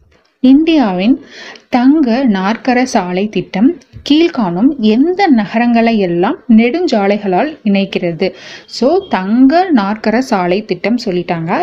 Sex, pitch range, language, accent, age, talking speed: female, 200-270 Hz, Tamil, native, 30-49, 90 wpm